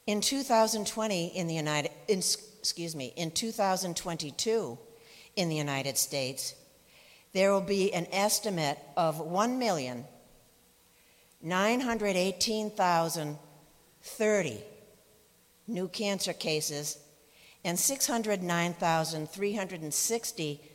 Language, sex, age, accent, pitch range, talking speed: English, female, 60-79, American, 150-210 Hz, 70 wpm